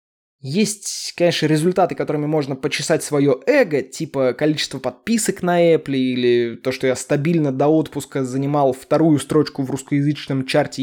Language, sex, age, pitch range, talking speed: Russian, male, 20-39, 135-175 Hz, 145 wpm